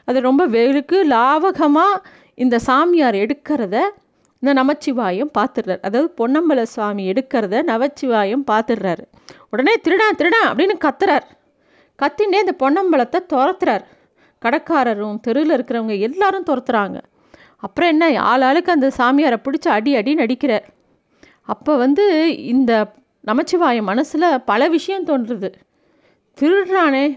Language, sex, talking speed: Tamil, female, 105 wpm